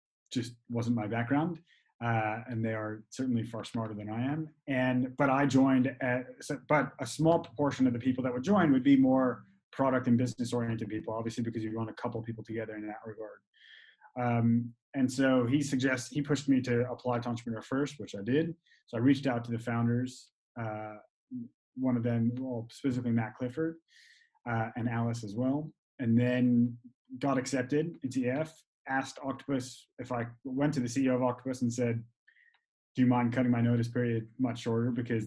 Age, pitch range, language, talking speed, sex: 30-49, 115-135 Hz, English, 190 wpm, male